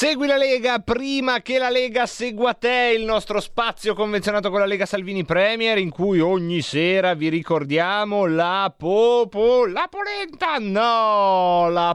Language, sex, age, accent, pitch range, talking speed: Italian, male, 30-49, native, 165-240 Hz, 150 wpm